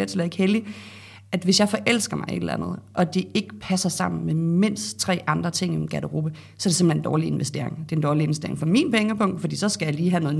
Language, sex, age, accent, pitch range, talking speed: Danish, female, 30-49, native, 155-185 Hz, 270 wpm